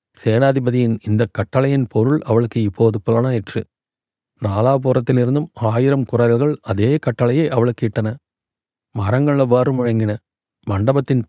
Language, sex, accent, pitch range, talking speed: Tamil, male, native, 115-135 Hz, 95 wpm